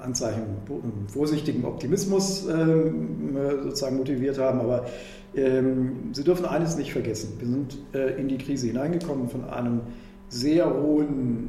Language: German